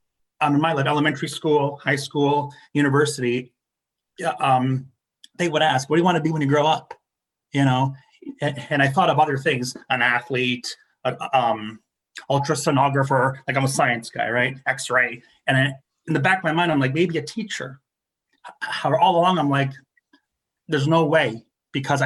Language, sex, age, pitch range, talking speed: English, male, 30-49, 135-165 Hz, 175 wpm